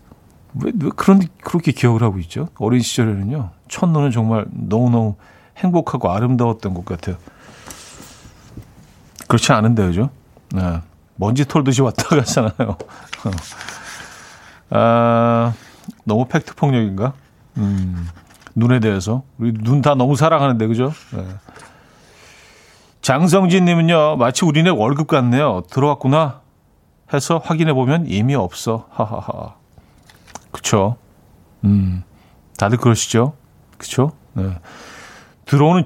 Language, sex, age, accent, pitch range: Korean, male, 40-59, native, 105-145 Hz